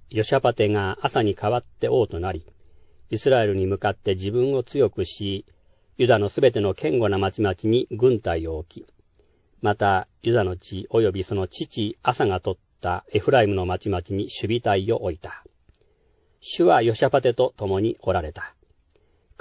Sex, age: male, 50-69